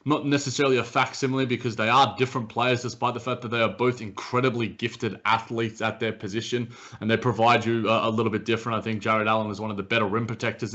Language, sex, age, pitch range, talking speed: English, male, 20-39, 110-130 Hz, 235 wpm